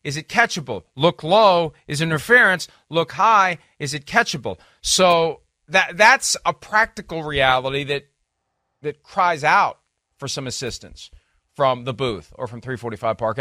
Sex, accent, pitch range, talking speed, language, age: male, American, 120-185 Hz, 145 wpm, English, 40-59